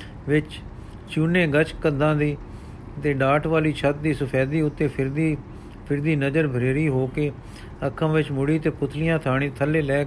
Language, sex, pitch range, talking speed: Punjabi, male, 135-160 Hz, 155 wpm